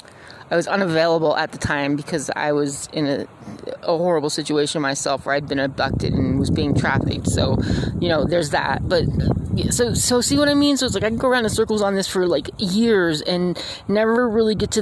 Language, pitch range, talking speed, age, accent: English, 155-195 Hz, 225 wpm, 30-49, American